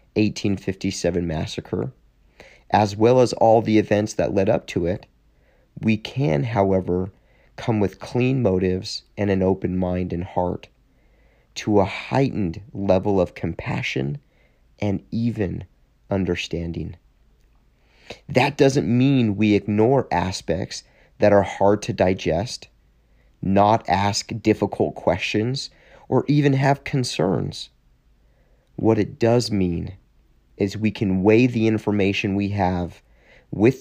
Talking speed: 120 wpm